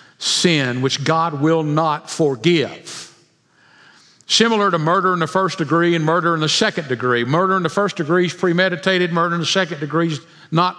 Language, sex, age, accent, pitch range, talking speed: English, male, 50-69, American, 145-190 Hz, 185 wpm